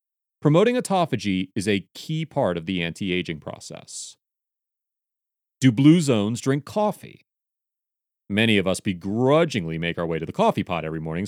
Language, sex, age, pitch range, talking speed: English, male, 30-49, 95-155 Hz, 150 wpm